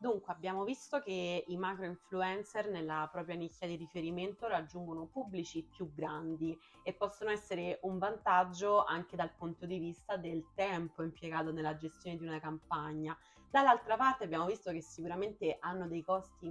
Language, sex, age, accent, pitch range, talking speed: Italian, female, 20-39, native, 165-200 Hz, 155 wpm